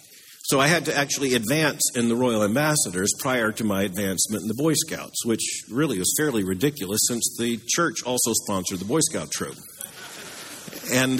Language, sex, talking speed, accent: English, male, 175 wpm, American